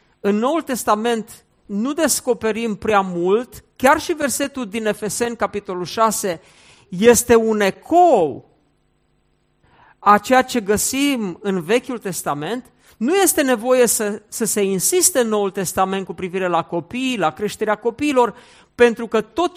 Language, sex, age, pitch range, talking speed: Romanian, male, 50-69, 195-255 Hz, 135 wpm